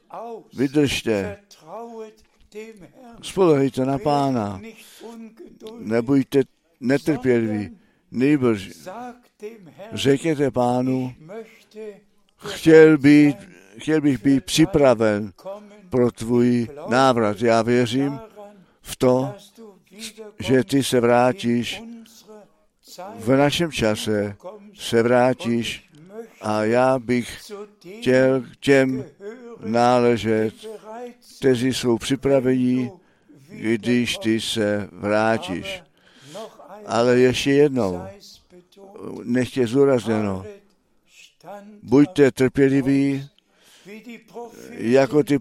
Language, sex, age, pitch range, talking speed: Czech, male, 60-79, 120-200 Hz, 70 wpm